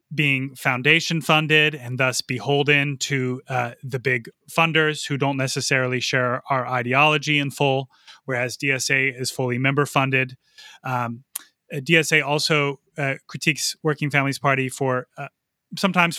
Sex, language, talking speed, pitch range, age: male, English, 135 wpm, 130-150 Hz, 30-49